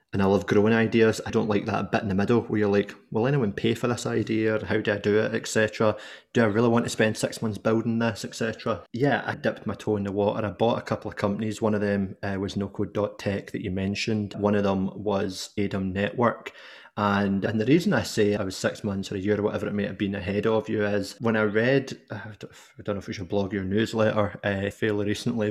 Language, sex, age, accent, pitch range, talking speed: English, male, 20-39, British, 100-110 Hz, 260 wpm